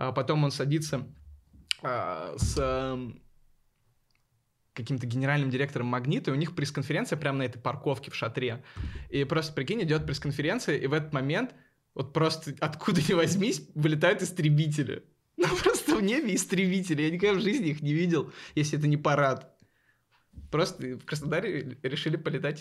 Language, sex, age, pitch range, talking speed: Russian, male, 20-39, 125-155 Hz, 145 wpm